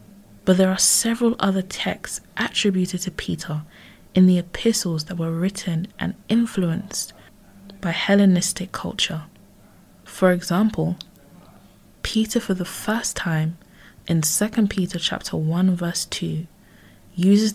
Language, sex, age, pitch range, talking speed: English, female, 20-39, 165-200 Hz, 120 wpm